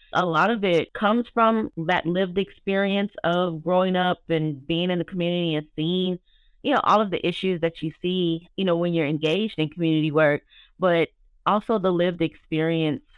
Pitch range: 150-185 Hz